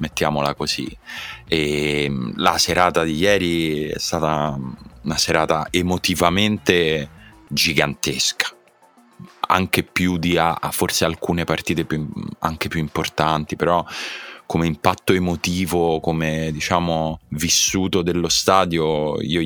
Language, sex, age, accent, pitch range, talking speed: Italian, male, 30-49, native, 75-90 Hz, 110 wpm